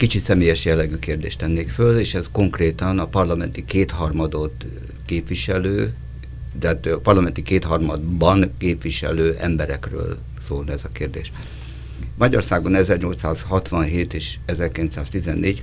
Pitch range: 65-85 Hz